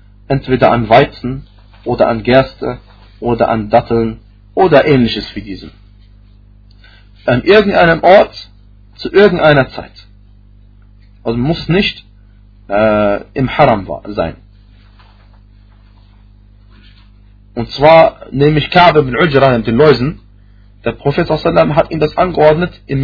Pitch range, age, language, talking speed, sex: 100-140 Hz, 40-59, German, 115 wpm, male